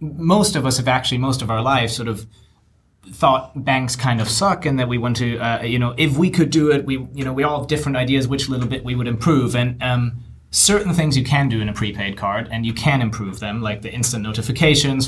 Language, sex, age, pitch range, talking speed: English, male, 20-39, 110-135 Hz, 250 wpm